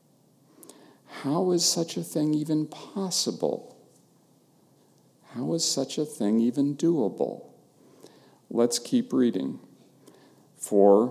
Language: English